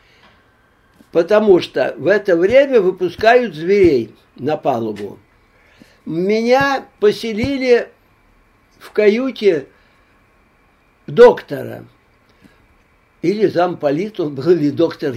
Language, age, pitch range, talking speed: Russian, 60-79, 180-265 Hz, 80 wpm